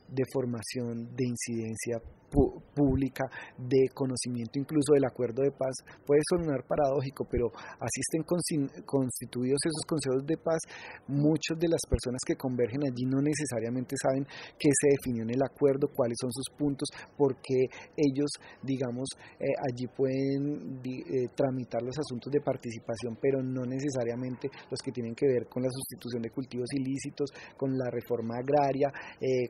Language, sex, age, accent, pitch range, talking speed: Spanish, male, 30-49, Colombian, 125-145 Hz, 155 wpm